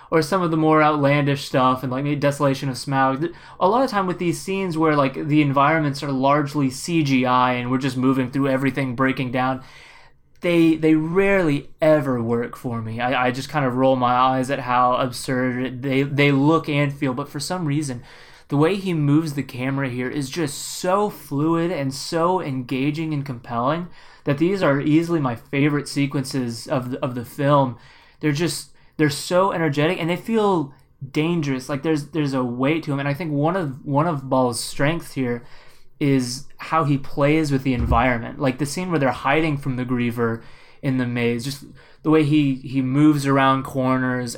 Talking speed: 195 wpm